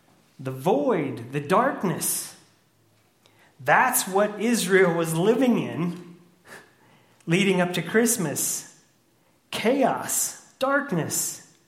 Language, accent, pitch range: English, American, 145-190 Hz